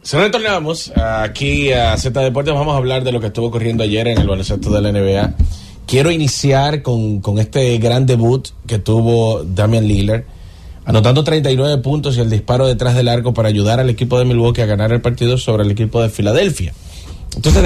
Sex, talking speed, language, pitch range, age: male, 195 wpm, English, 105-135 Hz, 30-49